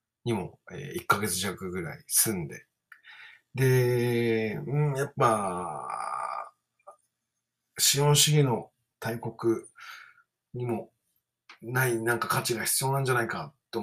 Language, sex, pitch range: Japanese, male, 115-150 Hz